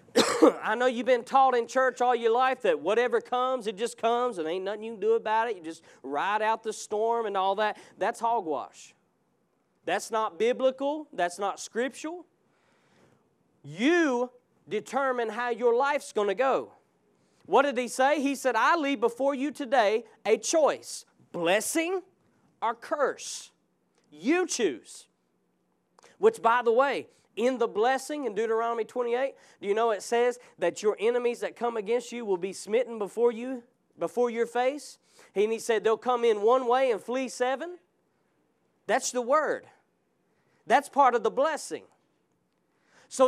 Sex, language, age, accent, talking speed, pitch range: male, English, 40-59, American, 160 wpm, 225-275 Hz